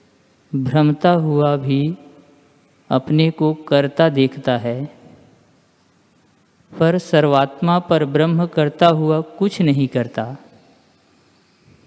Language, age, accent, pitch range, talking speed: Hindi, 50-69, native, 140-165 Hz, 85 wpm